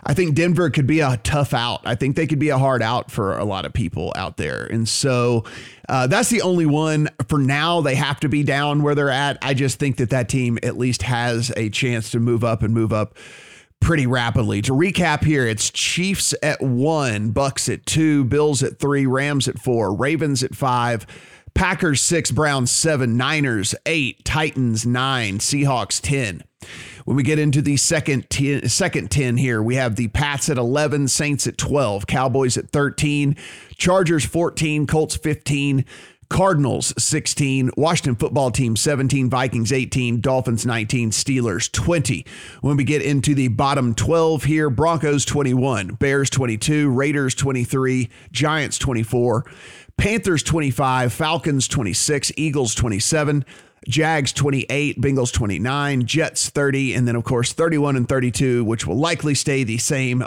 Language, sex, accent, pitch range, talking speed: English, male, American, 120-150 Hz, 165 wpm